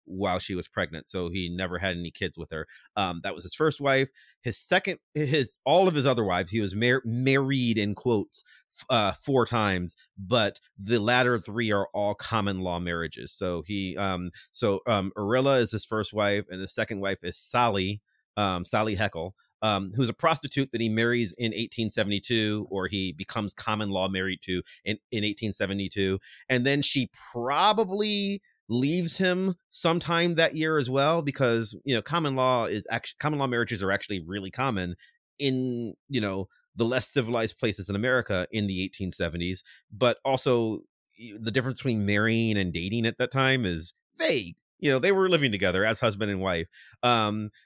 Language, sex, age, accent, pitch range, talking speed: English, male, 30-49, American, 95-130 Hz, 180 wpm